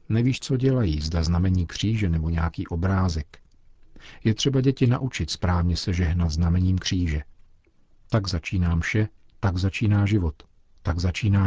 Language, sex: Czech, male